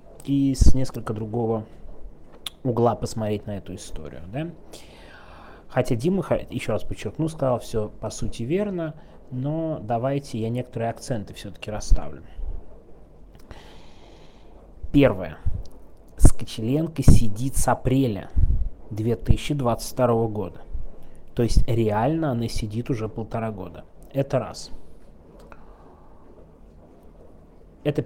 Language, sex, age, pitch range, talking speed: Russian, male, 30-49, 90-130 Hz, 95 wpm